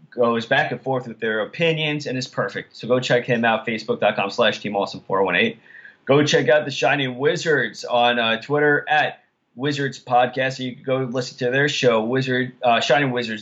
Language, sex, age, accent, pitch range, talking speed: English, male, 20-39, American, 115-135 Hz, 175 wpm